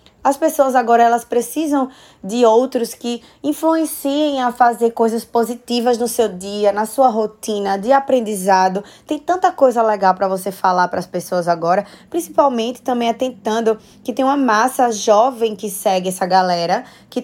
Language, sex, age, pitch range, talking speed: Portuguese, female, 20-39, 205-255 Hz, 155 wpm